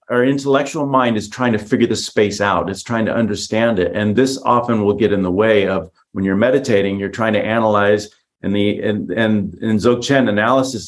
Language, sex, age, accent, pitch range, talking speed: English, male, 40-59, American, 100-125 Hz, 210 wpm